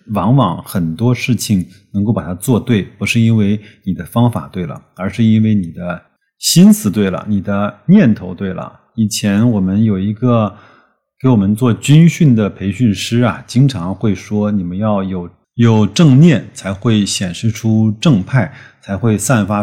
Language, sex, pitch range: Chinese, male, 100-120 Hz